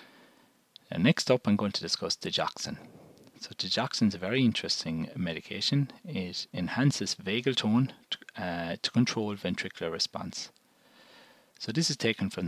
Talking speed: 135 wpm